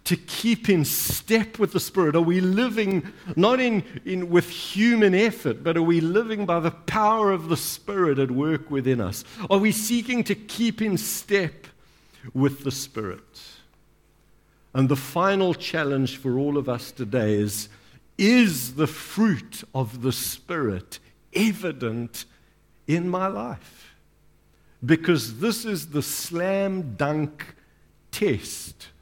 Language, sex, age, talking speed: English, male, 60-79, 140 wpm